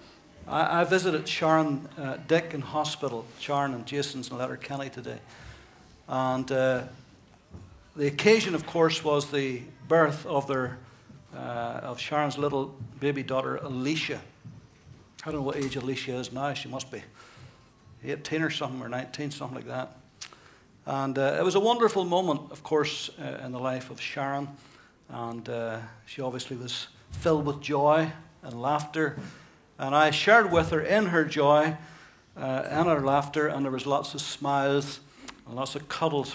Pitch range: 130-155 Hz